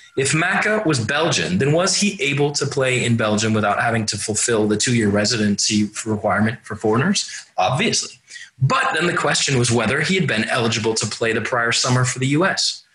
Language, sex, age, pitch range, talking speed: English, male, 30-49, 105-160 Hz, 190 wpm